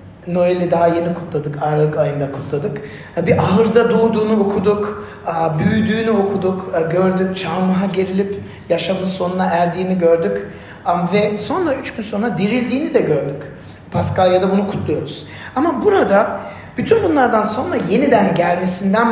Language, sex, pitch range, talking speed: Turkish, male, 170-220 Hz, 120 wpm